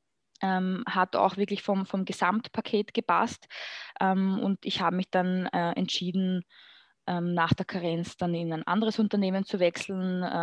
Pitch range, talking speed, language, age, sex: 170-200 Hz, 160 wpm, German, 20-39, female